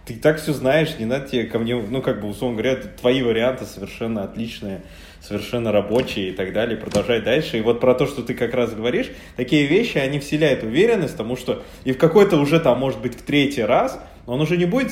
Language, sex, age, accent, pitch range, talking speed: Russian, male, 20-39, native, 120-170 Hz, 220 wpm